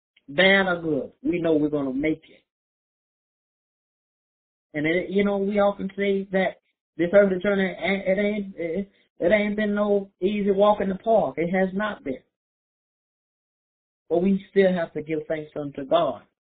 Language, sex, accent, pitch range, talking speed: English, male, American, 155-185 Hz, 165 wpm